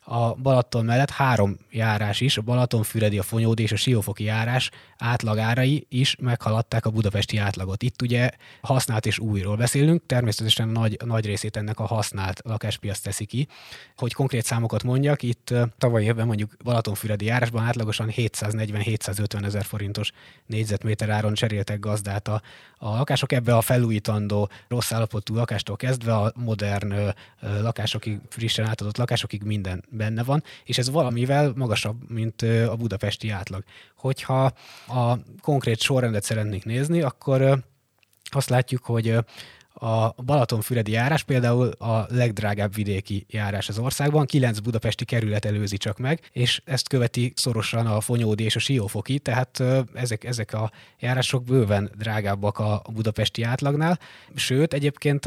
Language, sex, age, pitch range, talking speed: Hungarian, male, 20-39, 105-125 Hz, 140 wpm